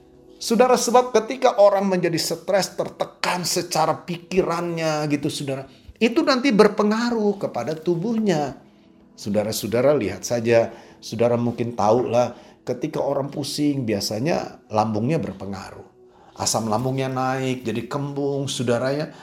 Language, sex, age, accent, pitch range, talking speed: Indonesian, male, 40-59, native, 125-200 Hz, 105 wpm